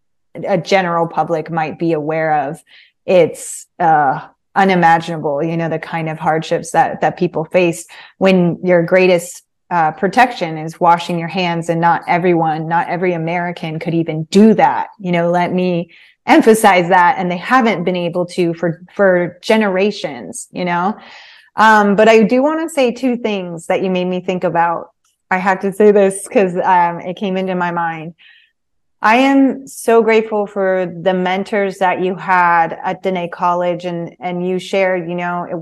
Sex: female